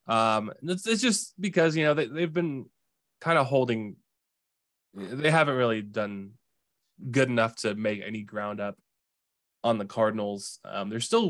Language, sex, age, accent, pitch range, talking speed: English, male, 10-29, American, 105-130 Hz, 155 wpm